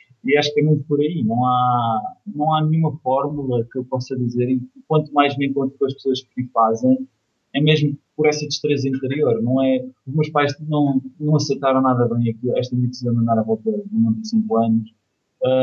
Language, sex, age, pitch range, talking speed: Portuguese, male, 20-39, 125-150 Hz, 210 wpm